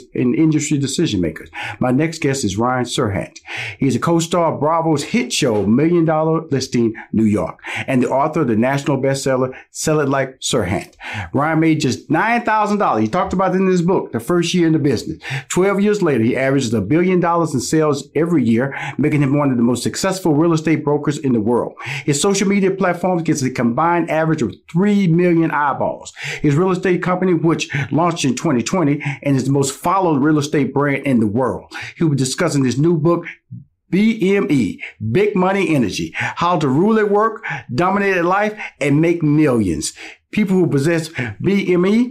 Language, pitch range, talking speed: English, 135-180 Hz, 190 wpm